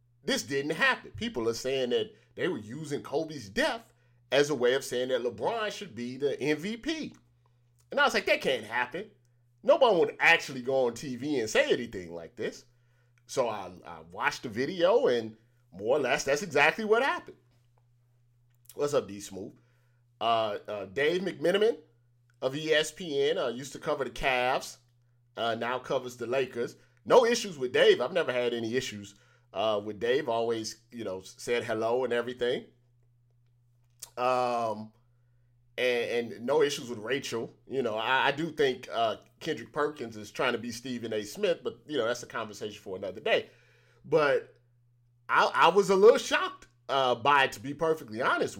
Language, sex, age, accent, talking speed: English, male, 30-49, American, 175 wpm